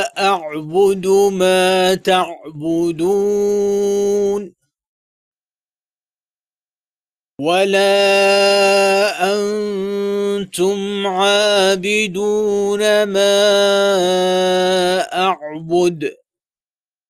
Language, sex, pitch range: Arabic, male, 150-200 Hz